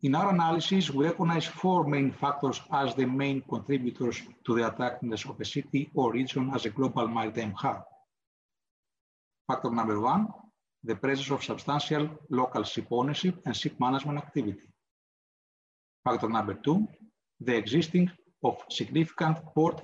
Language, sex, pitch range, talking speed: English, male, 125-160 Hz, 140 wpm